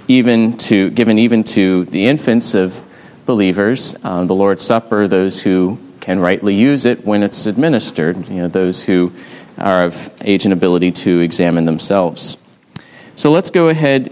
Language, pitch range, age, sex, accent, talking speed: English, 100-145 Hz, 30-49, male, American, 160 wpm